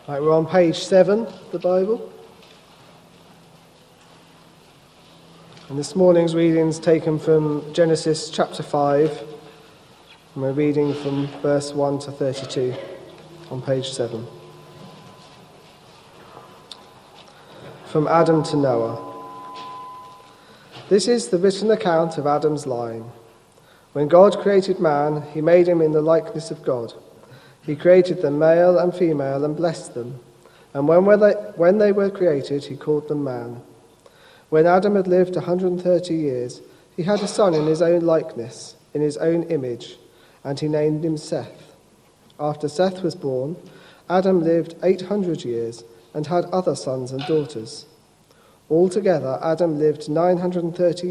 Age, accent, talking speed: 40-59, British, 130 wpm